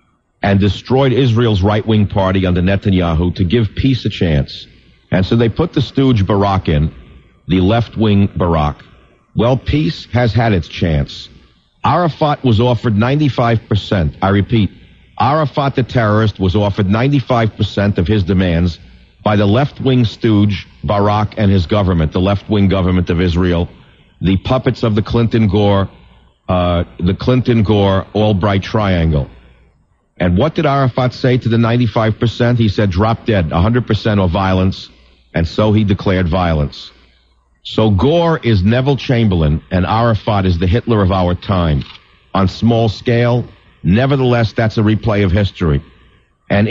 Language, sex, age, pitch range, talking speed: English, male, 50-69, 90-115 Hz, 140 wpm